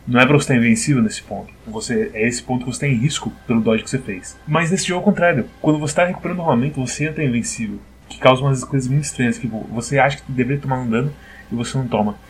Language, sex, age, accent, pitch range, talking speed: Portuguese, male, 20-39, Brazilian, 110-135 Hz, 270 wpm